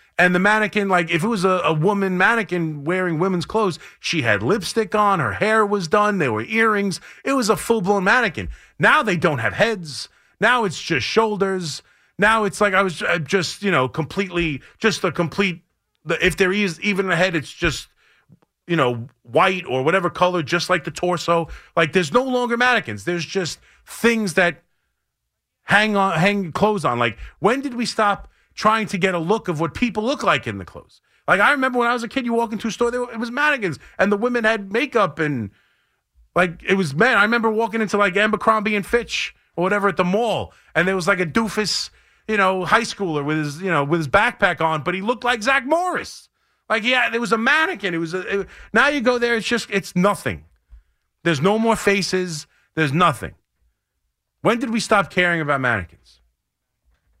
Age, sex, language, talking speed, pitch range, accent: 30-49, male, English, 205 wpm, 170-220 Hz, American